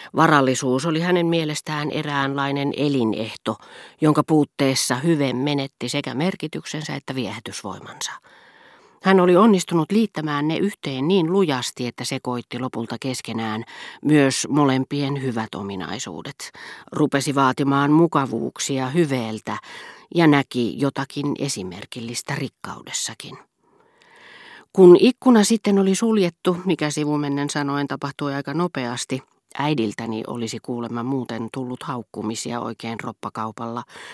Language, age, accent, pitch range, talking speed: Finnish, 40-59, native, 120-155 Hz, 100 wpm